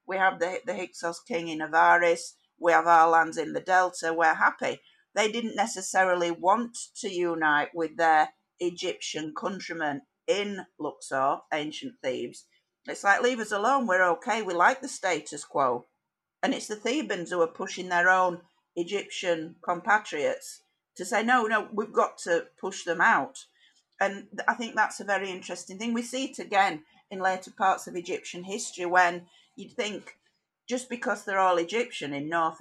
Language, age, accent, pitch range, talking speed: English, 50-69, British, 165-205 Hz, 170 wpm